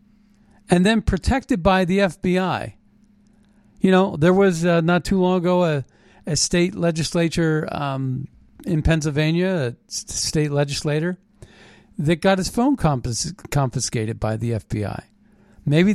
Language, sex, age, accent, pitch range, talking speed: English, male, 50-69, American, 145-195 Hz, 130 wpm